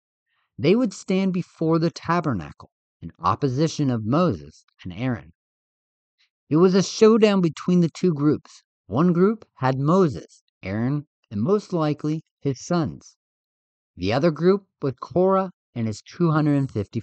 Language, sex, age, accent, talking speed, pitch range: English, male, 50-69, American, 135 wpm, 115-175 Hz